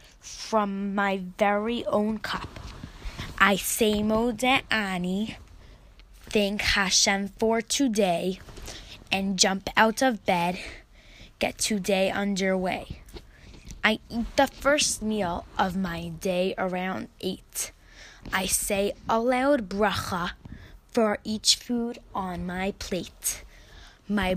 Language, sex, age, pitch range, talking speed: English, female, 10-29, 190-225 Hz, 105 wpm